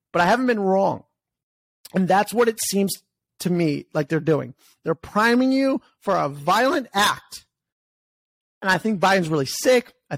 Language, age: English, 30-49